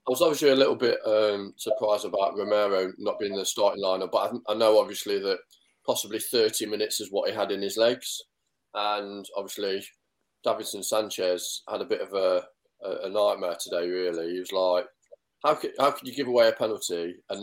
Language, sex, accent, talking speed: English, male, British, 195 wpm